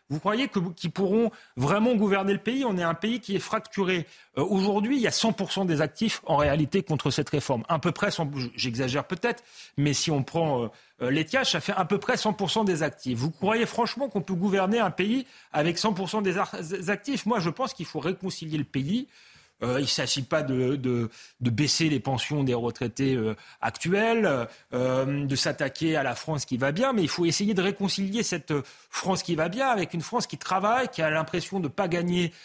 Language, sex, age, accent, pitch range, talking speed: French, male, 30-49, French, 150-210 Hz, 215 wpm